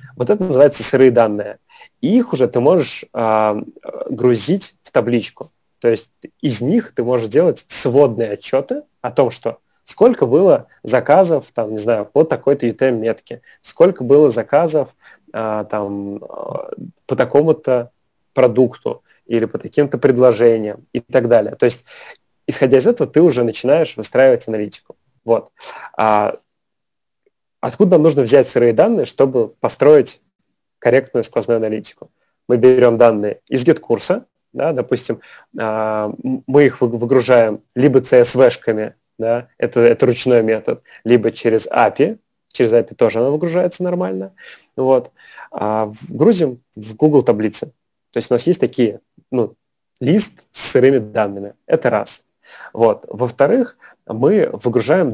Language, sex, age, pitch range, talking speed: Russian, male, 20-39, 115-145 Hz, 125 wpm